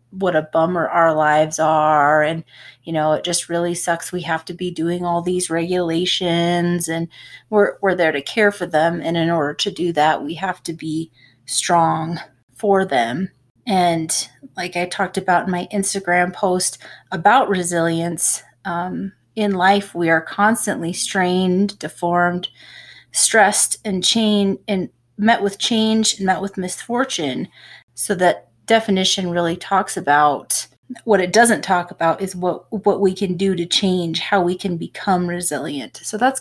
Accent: American